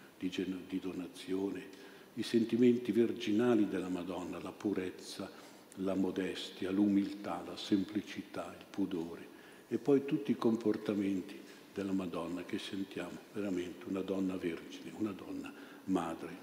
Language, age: Italian, 50-69